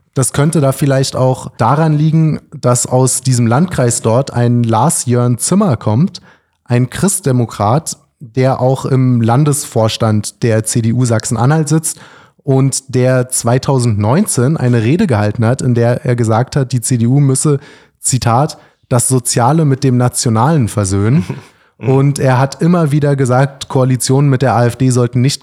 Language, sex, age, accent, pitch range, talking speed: German, male, 30-49, German, 120-145 Hz, 140 wpm